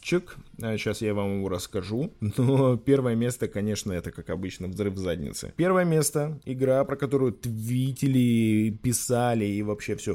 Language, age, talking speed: Russian, 20-39, 140 wpm